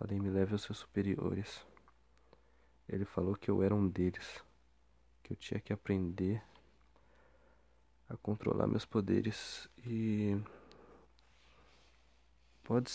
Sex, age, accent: male, 20-39, Brazilian